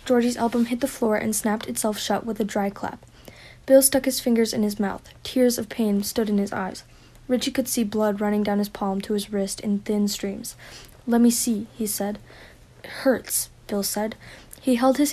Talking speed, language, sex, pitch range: 210 wpm, English, female, 210-245 Hz